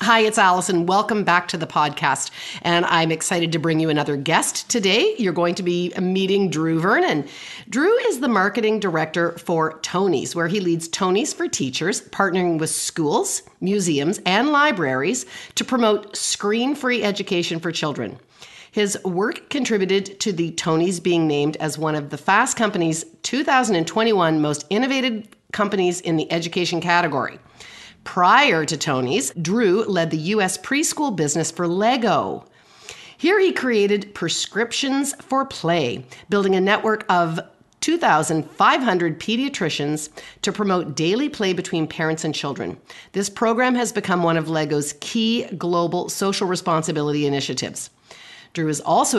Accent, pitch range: American, 160-215 Hz